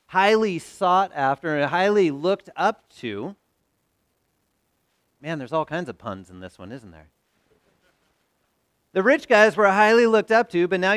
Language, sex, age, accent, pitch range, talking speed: English, male, 40-59, American, 135-205 Hz, 160 wpm